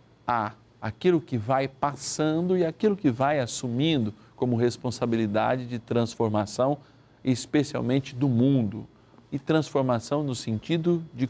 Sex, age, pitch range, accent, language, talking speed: male, 50-69, 120-165 Hz, Brazilian, Portuguese, 110 wpm